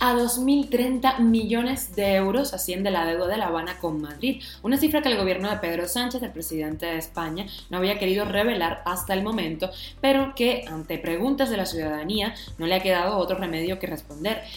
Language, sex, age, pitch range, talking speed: Spanish, female, 20-39, 175-235 Hz, 195 wpm